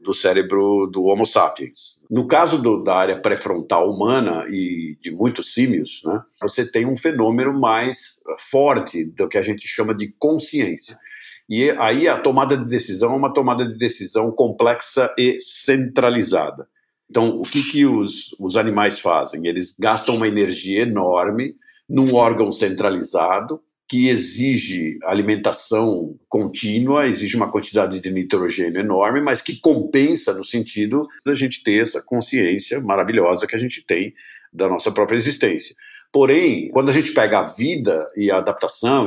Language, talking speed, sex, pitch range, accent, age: Portuguese, 150 wpm, male, 110-165 Hz, Brazilian, 50-69